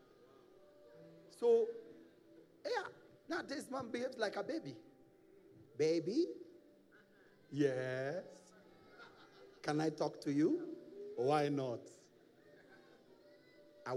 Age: 40-59